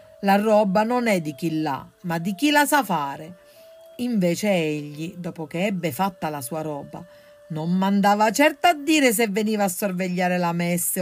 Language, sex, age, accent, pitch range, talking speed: Italian, female, 50-69, native, 170-235 Hz, 180 wpm